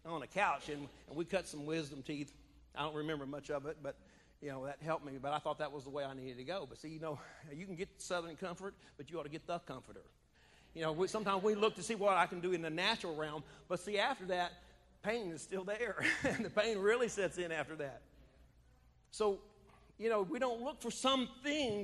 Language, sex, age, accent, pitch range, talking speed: English, male, 50-69, American, 145-210 Hz, 240 wpm